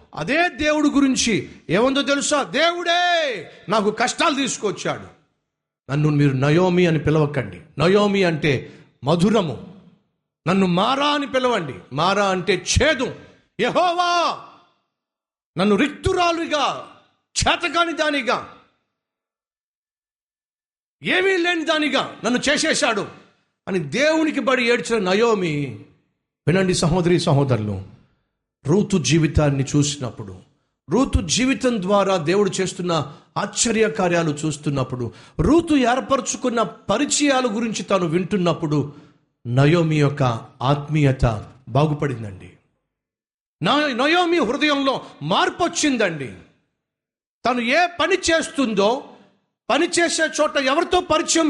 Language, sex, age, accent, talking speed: Telugu, male, 50-69, native, 90 wpm